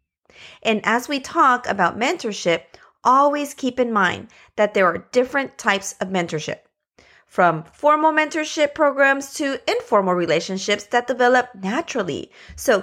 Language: English